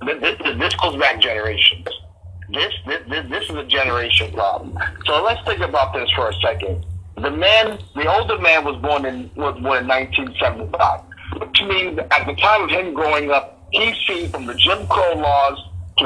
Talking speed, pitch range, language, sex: 185 wpm, 90-135 Hz, English, male